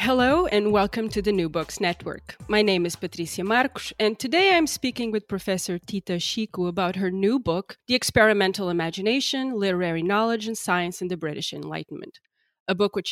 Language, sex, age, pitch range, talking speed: English, female, 30-49, 180-225 Hz, 180 wpm